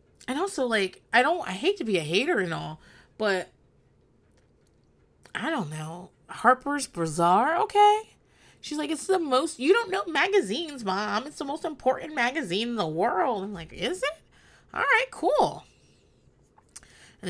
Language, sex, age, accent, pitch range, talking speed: English, female, 30-49, American, 170-275 Hz, 160 wpm